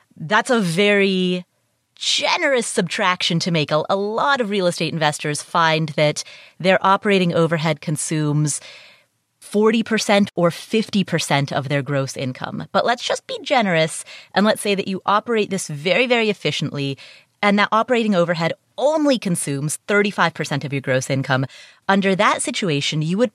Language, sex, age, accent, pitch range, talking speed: English, female, 30-49, American, 155-215 Hz, 145 wpm